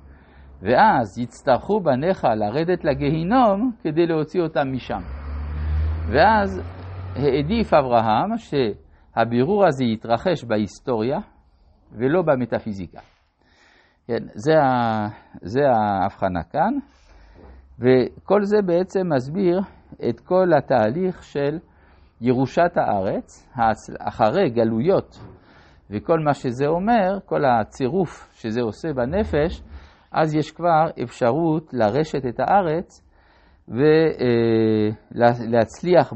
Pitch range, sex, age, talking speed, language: 95-155 Hz, male, 50-69, 85 wpm, Hebrew